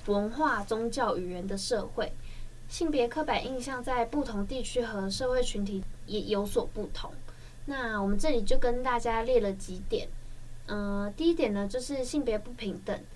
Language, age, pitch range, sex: Chinese, 10-29, 205-265 Hz, female